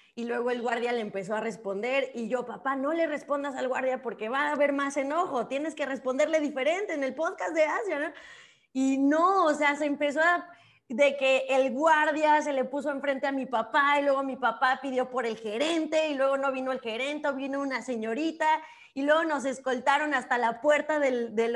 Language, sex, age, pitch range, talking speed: Spanish, female, 20-39, 255-315 Hz, 210 wpm